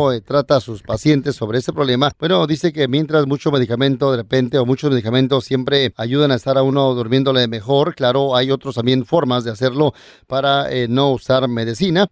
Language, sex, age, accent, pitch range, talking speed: Spanish, male, 30-49, Mexican, 125-140 Hz, 190 wpm